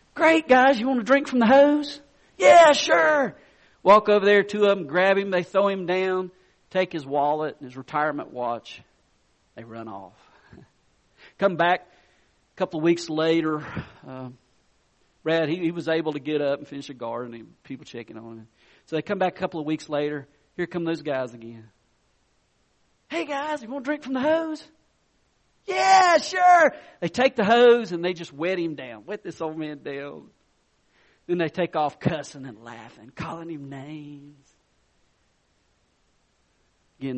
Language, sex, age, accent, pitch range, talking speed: English, male, 40-59, American, 135-195 Hz, 175 wpm